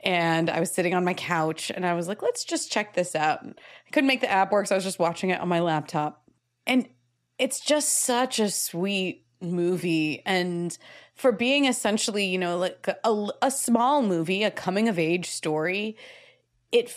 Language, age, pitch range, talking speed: English, 20-39, 170-220 Hz, 185 wpm